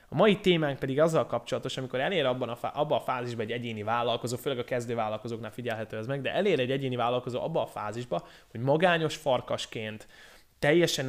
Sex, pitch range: male, 120-145 Hz